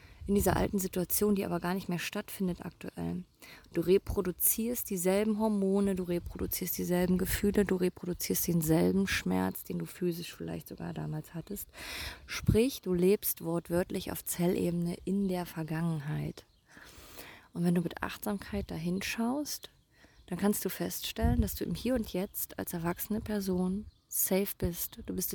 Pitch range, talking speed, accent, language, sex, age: 120-190 Hz, 145 wpm, German, German, female, 20-39